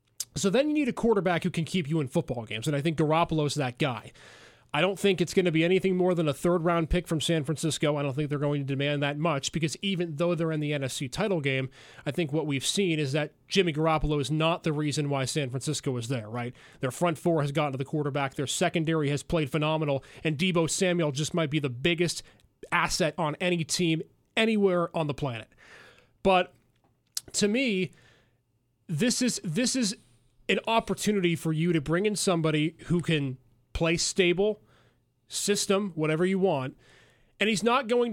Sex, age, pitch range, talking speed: male, 30-49, 145-180 Hz, 200 wpm